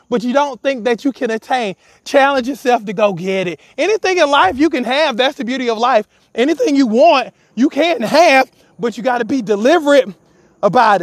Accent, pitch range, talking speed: American, 215-270 Hz, 205 wpm